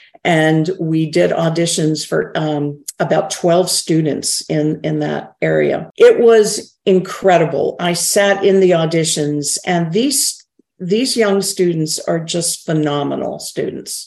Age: 50-69